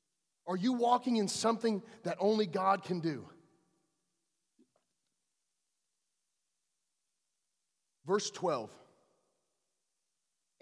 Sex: male